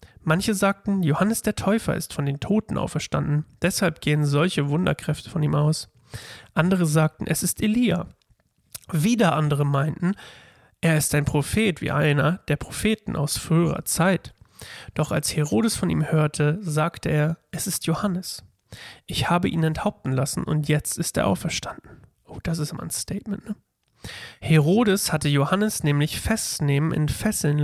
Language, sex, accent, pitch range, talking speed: German, male, German, 145-180 Hz, 150 wpm